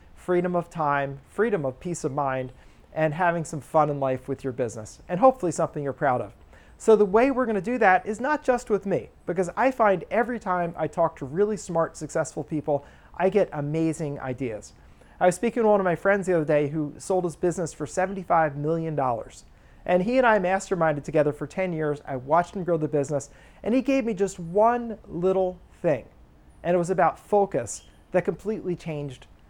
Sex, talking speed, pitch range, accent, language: male, 205 wpm, 150-195 Hz, American, English